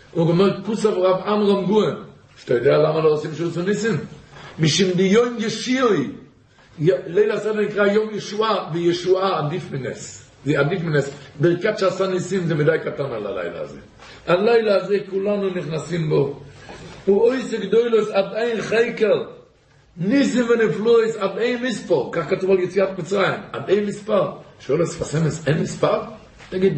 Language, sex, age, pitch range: Hebrew, male, 60-79, 180-220 Hz